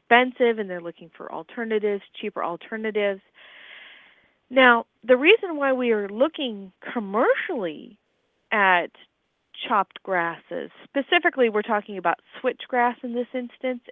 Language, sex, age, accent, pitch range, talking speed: English, female, 40-59, American, 185-245 Hz, 110 wpm